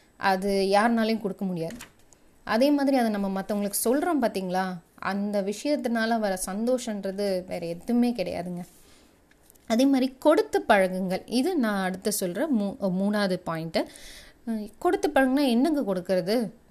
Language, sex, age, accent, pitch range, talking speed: Tamil, female, 30-49, native, 190-245 Hz, 115 wpm